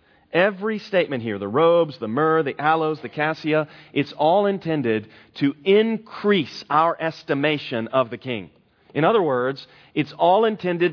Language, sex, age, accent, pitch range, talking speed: English, male, 40-59, American, 130-185 Hz, 150 wpm